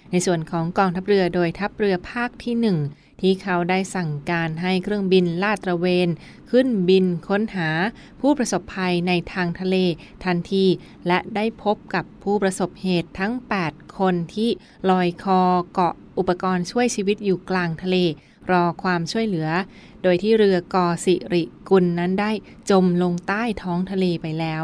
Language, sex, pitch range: Thai, female, 175-210 Hz